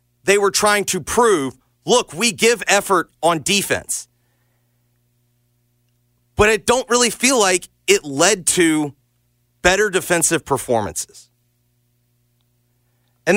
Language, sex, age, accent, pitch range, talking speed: English, male, 40-59, American, 120-170 Hz, 110 wpm